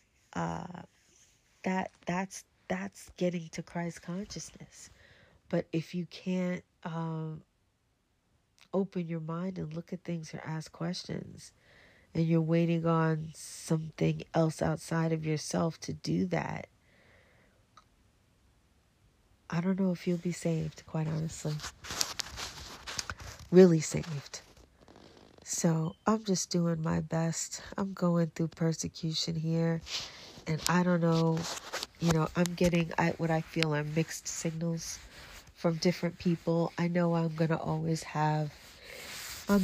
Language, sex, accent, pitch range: English, female, American, 160-180 Hz